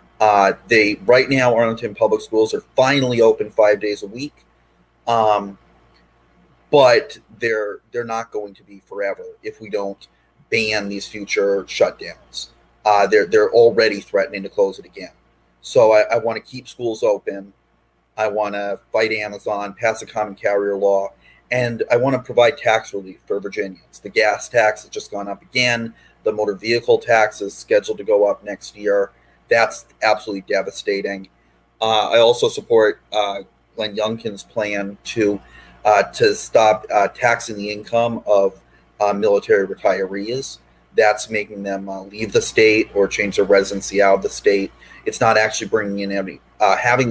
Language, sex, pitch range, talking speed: English, male, 100-125 Hz, 165 wpm